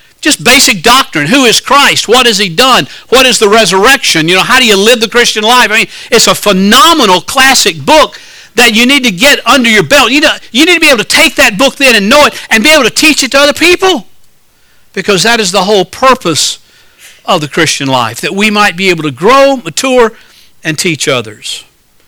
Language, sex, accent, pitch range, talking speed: English, male, American, 165-235 Hz, 225 wpm